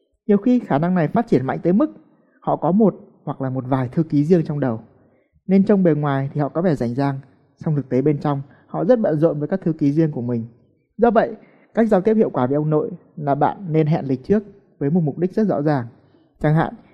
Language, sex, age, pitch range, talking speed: Vietnamese, male, 20-39, 140-200 Hz, 260 wpm